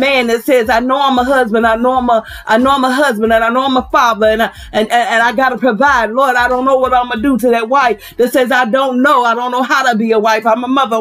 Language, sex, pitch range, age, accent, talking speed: English, female, 225-295 Hz, 40-59, American, 325 wpm